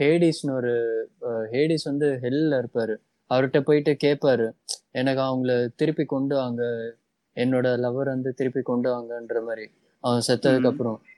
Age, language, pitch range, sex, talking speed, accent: 20-39, Tamil, 125-145 Hz, male, 125 wpm, native